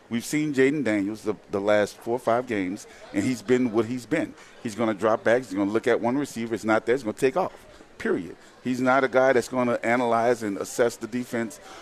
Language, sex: English, male